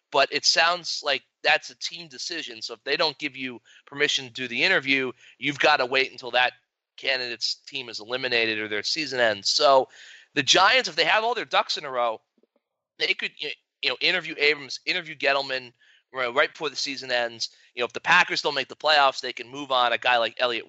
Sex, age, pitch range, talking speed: male, 30-49, 120-155 Hz, 220 wpm